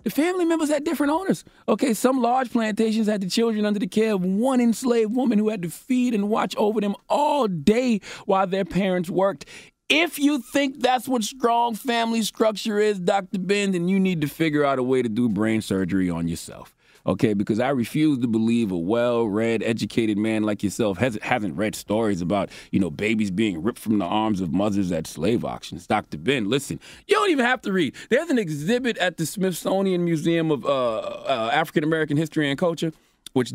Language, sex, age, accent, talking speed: English, male, 30-49, American, 200 wpm